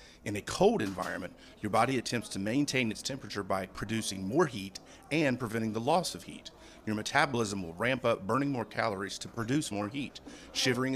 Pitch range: 100-125 Hz